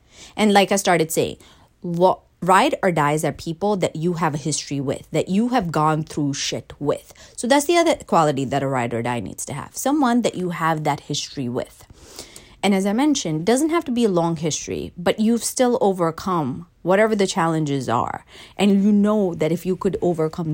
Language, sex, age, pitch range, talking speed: English, female, 30-49, 150-220 Hz, 205 wpm